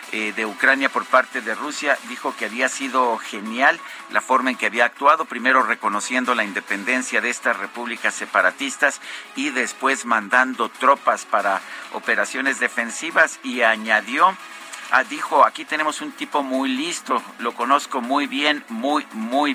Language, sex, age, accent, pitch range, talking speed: Spanish, male, 50-69, Mexican, 115-155 Hz, 145 wpm